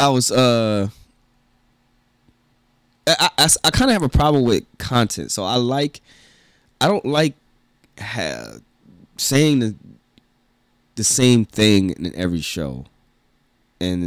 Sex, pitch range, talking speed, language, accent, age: male, 95-125 Hz, 125 wpm, English, American, 20-39